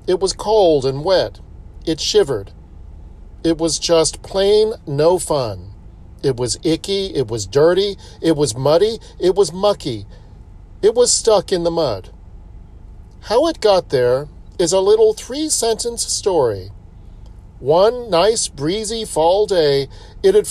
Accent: American